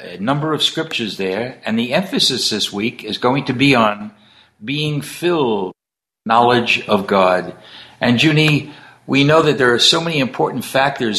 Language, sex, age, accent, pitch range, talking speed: English, male, 60-79, American, 120-165 Hz, 170 wpm